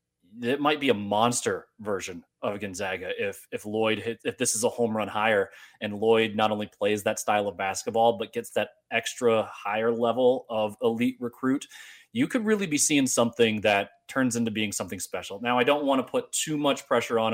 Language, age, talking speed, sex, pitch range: English, 30-49, 205 wpm, male, 110-130 Hz